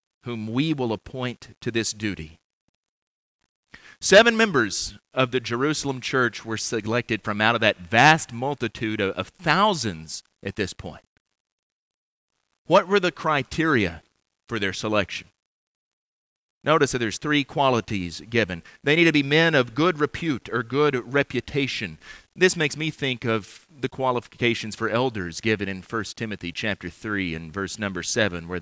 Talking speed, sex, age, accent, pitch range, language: 150 wpm, male, 40-59, American, 105-140 Hz, English